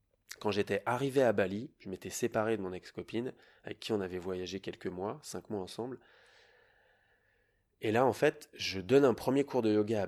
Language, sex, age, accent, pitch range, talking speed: French, male, 20-39, French, 100-135 Hz, 195 wpm